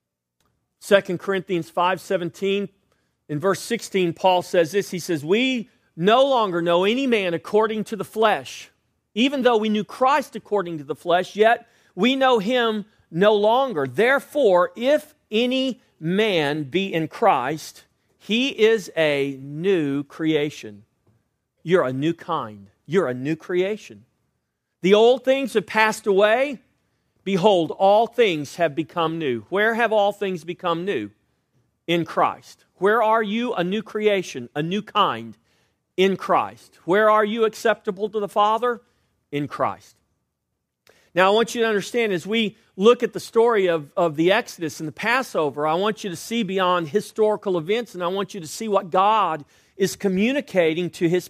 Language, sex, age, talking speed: English, male, 40-59, 160 wpm